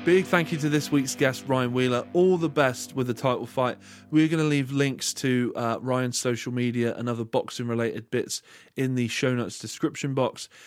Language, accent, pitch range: English, British, 120-145 Hz